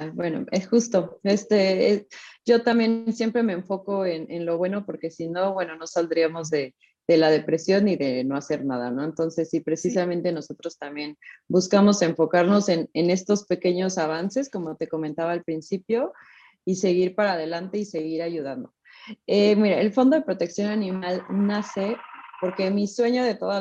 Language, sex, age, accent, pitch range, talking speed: Spanish, female, 30-49, Mexican, 165-205 Hz, 170 wpm